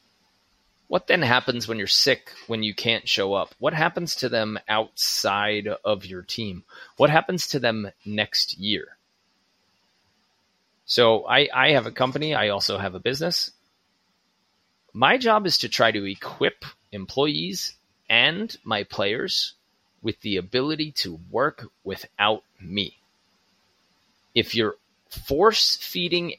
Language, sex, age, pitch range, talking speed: English, male, 30-49, 105-145 Hz, 130 wpm